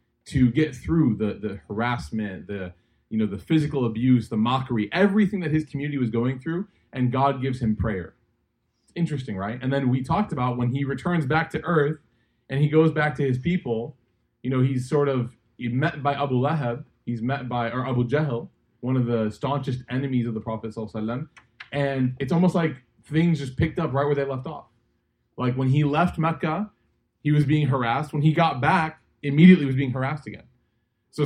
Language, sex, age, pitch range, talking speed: English, male, 20-39, 115-145 Hz, 200 wpm